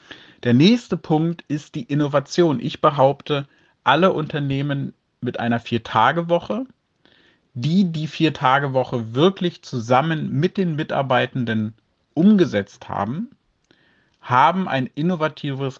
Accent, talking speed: German, 100 wpm